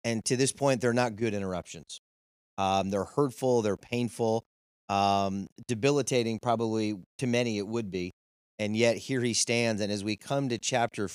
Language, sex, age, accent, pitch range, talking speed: English, male, 30-49, American, 105-125 Hz, 170 wpm